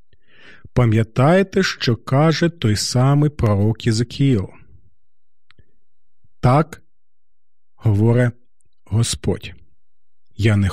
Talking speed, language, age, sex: 65 wpm, Ukrainian, 40-59, male